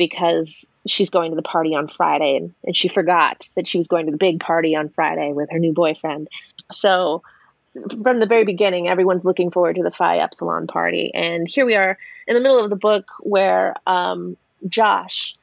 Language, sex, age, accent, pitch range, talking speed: English, female, 30-49, American, 170-205 Hz, 200 wpm